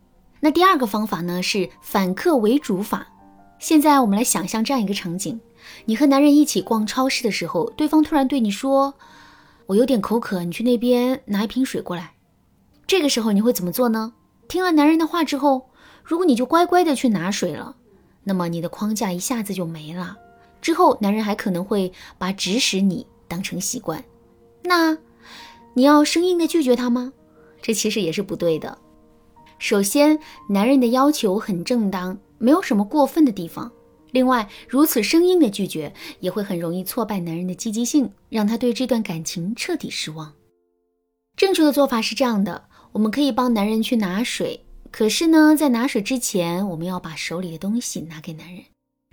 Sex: female